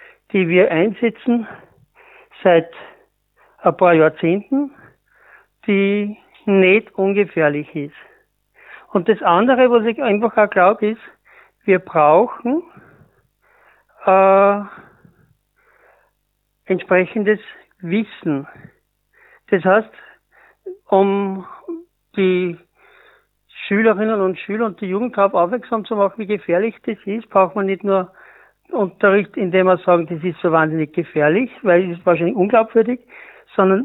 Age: 60-79